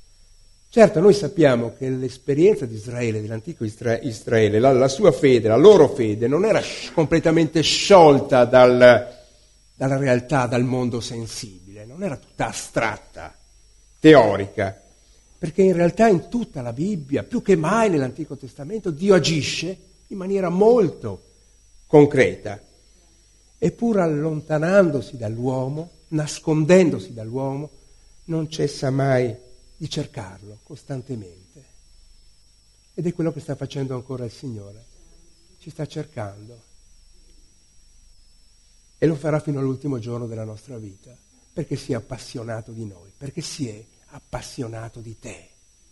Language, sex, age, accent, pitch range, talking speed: Italian, male, 60-79, native, 110-160 Hz, 120 wpm